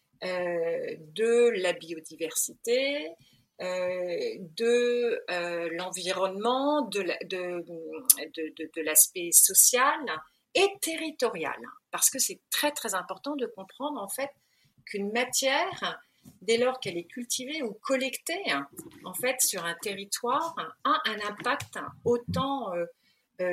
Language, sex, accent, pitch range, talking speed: French, female, French, 180-265 Hz, 105 wpm